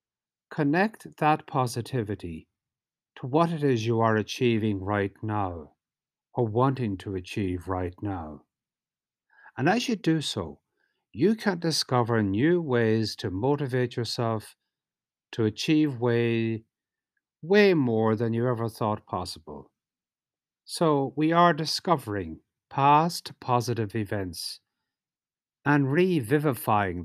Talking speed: 110 wpm